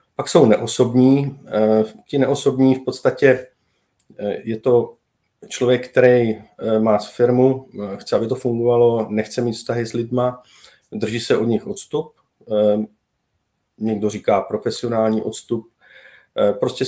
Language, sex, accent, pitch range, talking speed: Czech, male, native, 105-125 Hz, 115 wpm